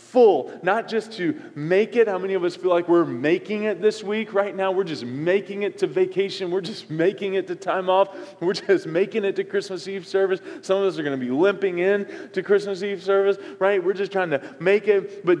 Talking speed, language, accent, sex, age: 240 wpm, English, American, male, 20-39